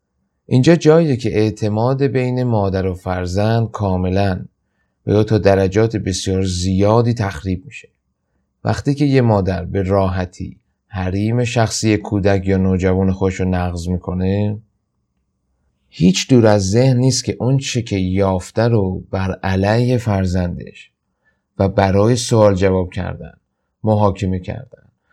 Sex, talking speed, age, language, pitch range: male, 125 wpm, 30-49, Persian, 95-110 Hz